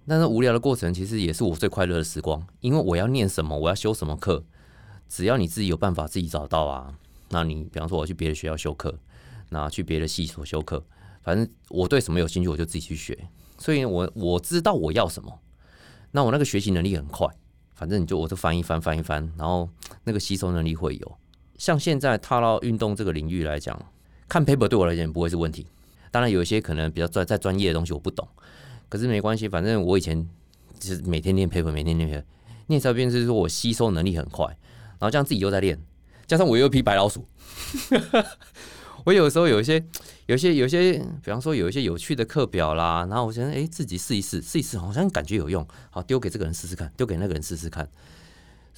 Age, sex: 30-49, male